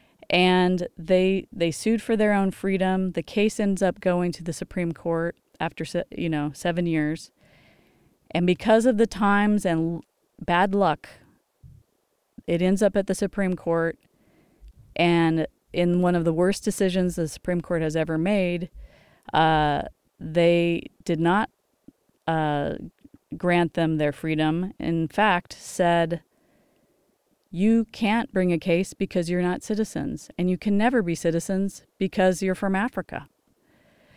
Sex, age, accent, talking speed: female, 30-49, American, 140 wpm